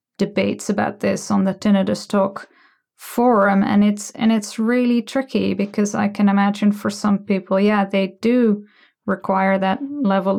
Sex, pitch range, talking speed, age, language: female, 190-210 Hz, 155 wpm, 20-39, English